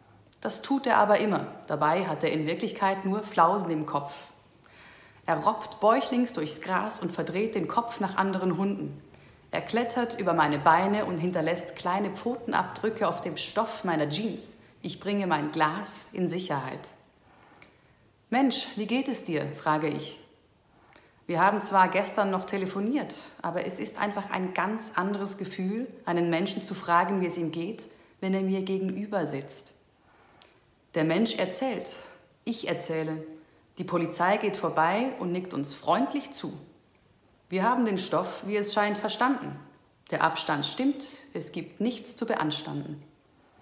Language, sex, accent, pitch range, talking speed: German, female, German, 165-210 Hz, 150 wpm